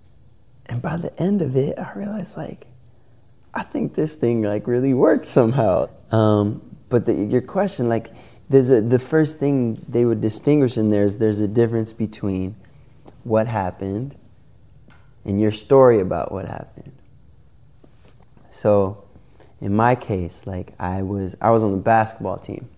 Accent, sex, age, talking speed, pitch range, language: American, male, 20-39, 155 wpm, 105-120 Hz, English